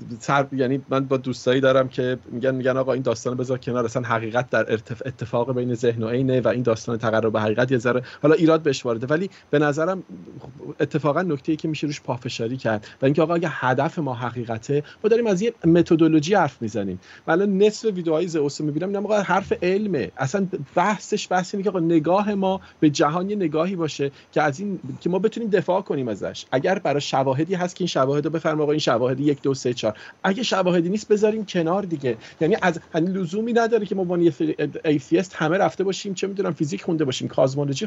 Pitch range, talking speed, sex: 130-185 Hz, 205 wpm, male